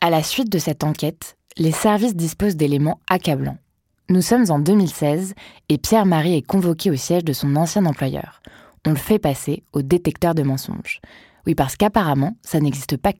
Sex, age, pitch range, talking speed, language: female, 20-39, 140-185 Hz, 175 wpm, French